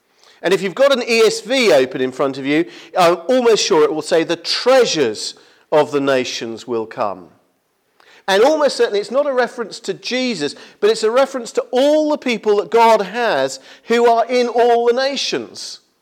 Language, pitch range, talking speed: English, 180-240 Hz, 185 wpm